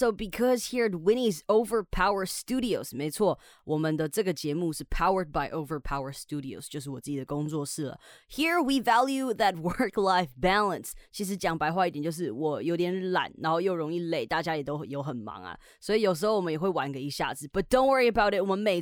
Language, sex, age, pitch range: Chinese, female, 20-39, 155-220 Hz